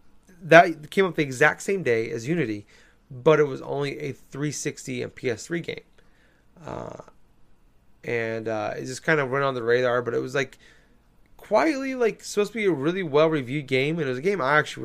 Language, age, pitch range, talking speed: English, 20-39, 115-165 Hz, 200 wpm